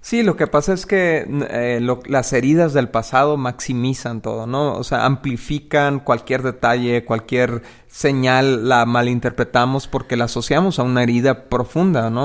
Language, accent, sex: Spanish, Mexican, male